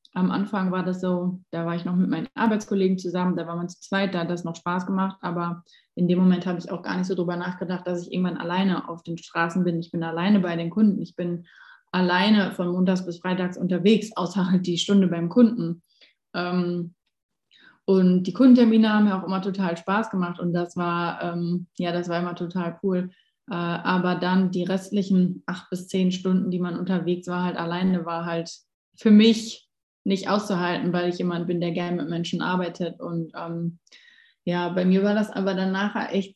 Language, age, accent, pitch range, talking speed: German, 20-39, German, 175-200 Hz, 200 wpm